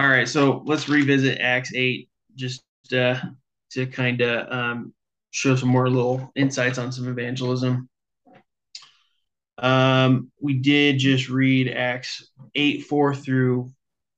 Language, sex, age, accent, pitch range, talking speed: English, male, 20-39, American, 125-140 Hz, 125 wpm